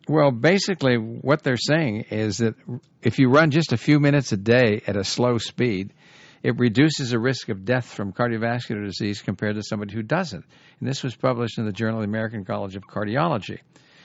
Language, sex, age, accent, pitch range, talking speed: English, male, 60-79, American, 110-150 Hz, 200 wpm